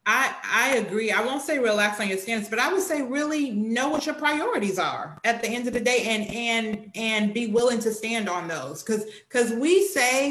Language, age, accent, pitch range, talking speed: English, 30-49, American, 200-245 Hz, 225 wpm